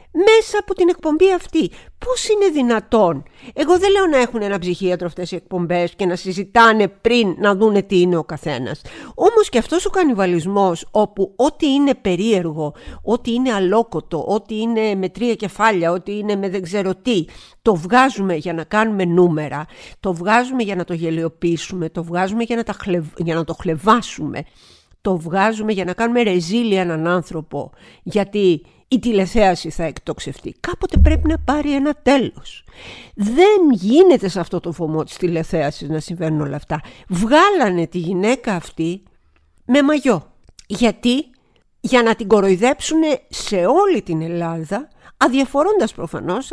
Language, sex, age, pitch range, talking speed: Greek, female, 50-69, 175-265 Hz, 155 wpm